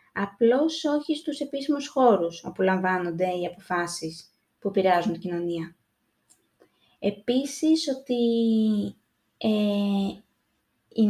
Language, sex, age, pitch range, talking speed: Greek, female, 20-39, 205-265 Hz, 85 wpm